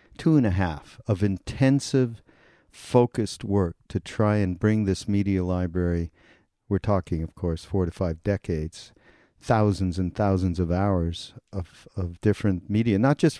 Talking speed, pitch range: 150 wpm, 95-115 Hz